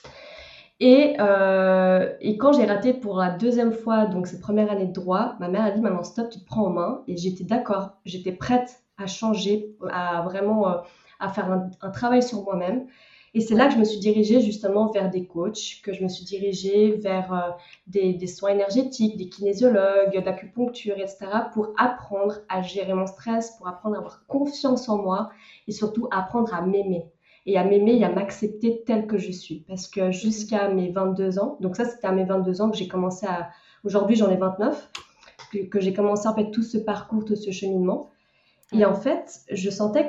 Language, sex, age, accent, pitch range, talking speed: French, female, 20-39, French, 190-225 Hz, 210 wpm